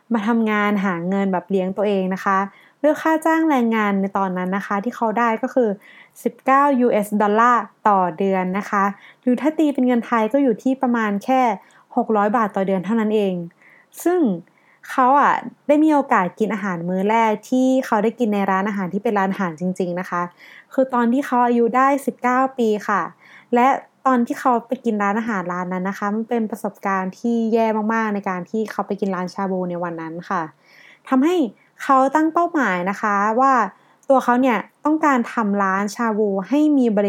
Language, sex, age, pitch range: Thai, female, 20-39, 200-260 Hz